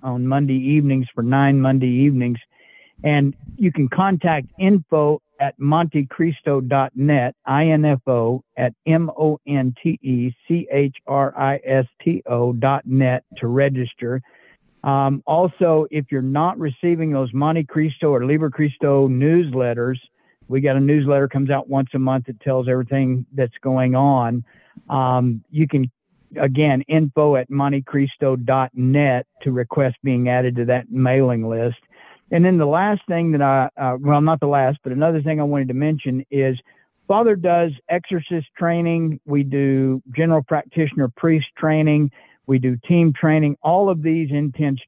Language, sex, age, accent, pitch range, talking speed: English, male, 50-69, American, 130-155 Hz, 135 wpm